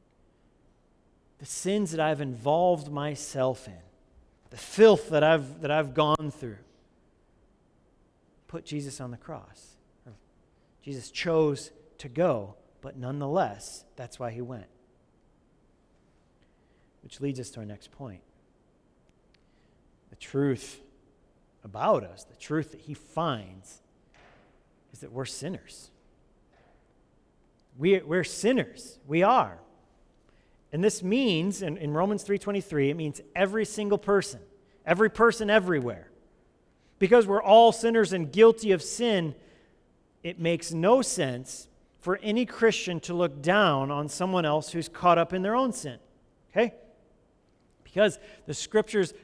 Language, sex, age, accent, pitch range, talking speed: English, male, 40-59, American, 140-210 Hz, 125 wpm